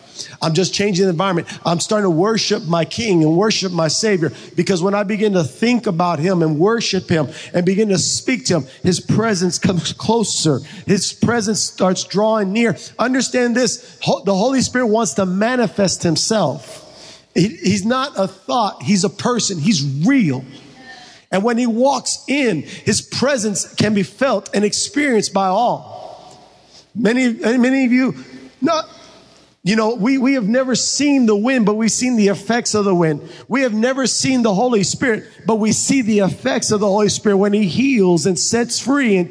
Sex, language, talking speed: male, English, 180 wpm